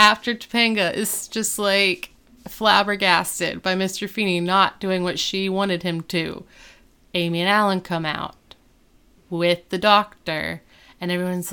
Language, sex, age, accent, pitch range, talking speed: English, female, 30-49, American, 170-205 Hz, 135 wpm